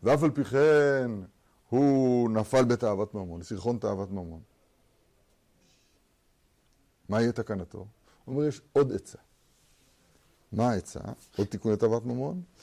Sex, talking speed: male, 120 wpm